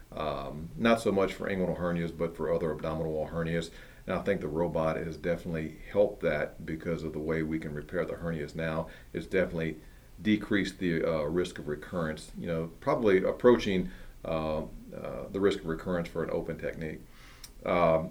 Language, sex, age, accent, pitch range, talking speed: English, male, 40-59, American, 80-100 Hz, 180 wpm